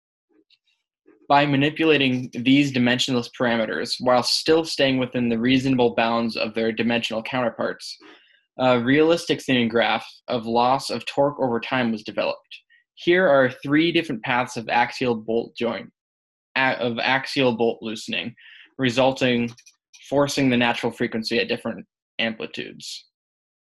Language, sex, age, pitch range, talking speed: English, male, 10-29, 115-130 Hz, 125 wpm